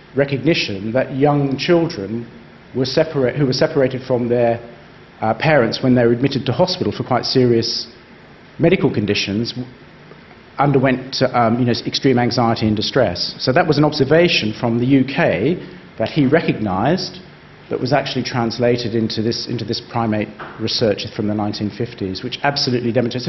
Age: 40-59